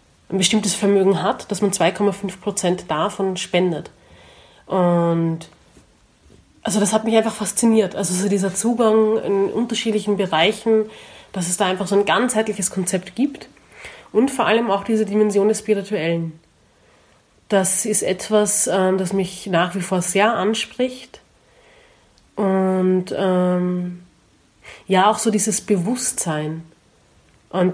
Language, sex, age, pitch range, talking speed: German, female, 30-49, 180-215 Hz, 130 wpm